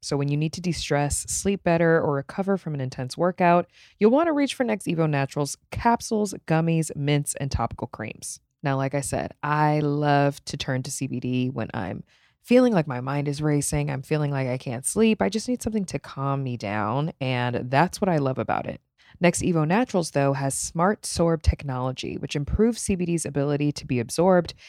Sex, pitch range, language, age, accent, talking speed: female, 140-185 Hz, English, 20-39, American, 200 wpm